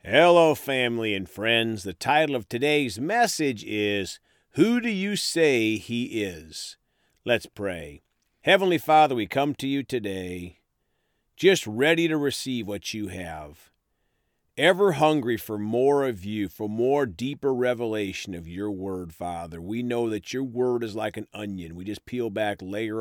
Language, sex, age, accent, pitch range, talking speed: English, male, 50-69, American, 105-145 Hz, 155 wpm